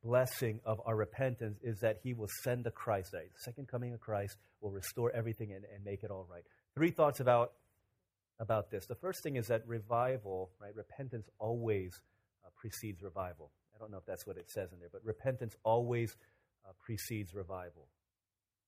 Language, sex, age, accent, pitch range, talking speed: English, male, 40-59, American, 105-135 Hz, 190 wpm